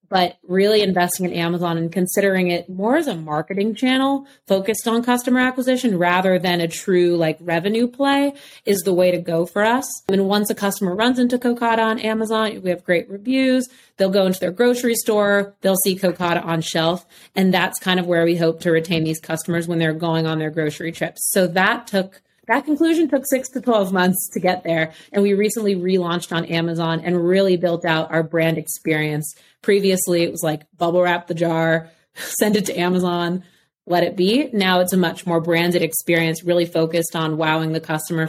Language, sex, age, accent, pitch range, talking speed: English, female, 30-49, American, 165-205 Hz, 200 wpm